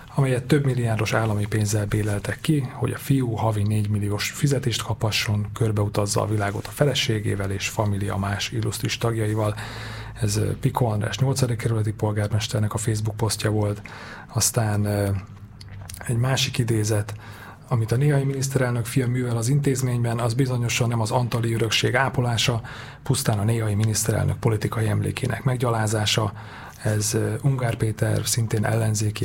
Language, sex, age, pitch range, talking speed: Hungarian, male, 30-49, 110-120 Hz, 135 wpm